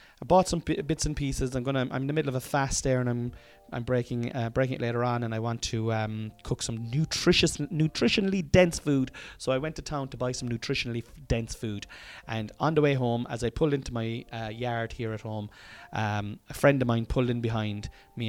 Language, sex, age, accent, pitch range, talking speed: English, male, 30-49, Irish, 110-135 Hz, 240 wpm